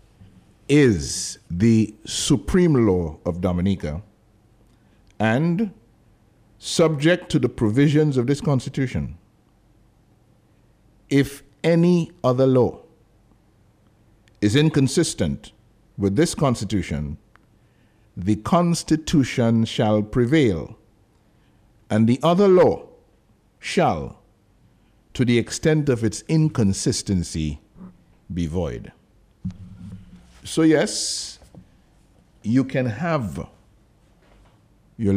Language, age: English, 60-79